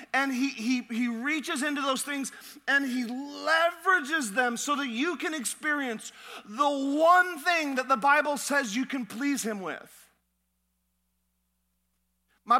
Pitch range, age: 235-290 Hz, 40-59